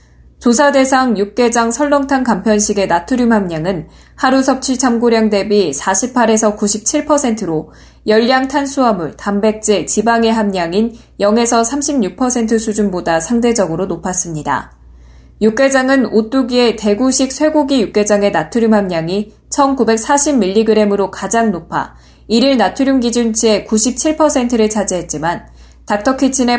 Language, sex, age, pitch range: Korean, female, 20-39, 195-255 Hz